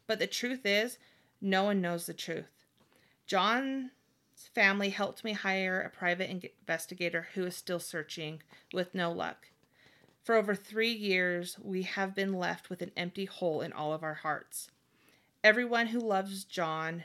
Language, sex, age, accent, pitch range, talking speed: English, female, 30-49, American, 175-205 Hz, 160 wpm